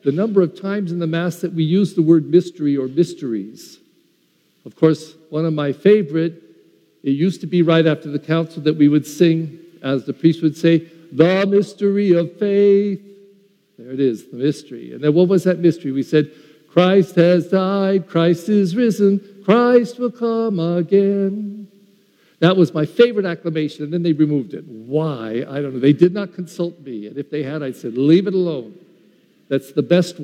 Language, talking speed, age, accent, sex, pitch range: English, 190 wpm, 50-69, American, male, 140-190 Hz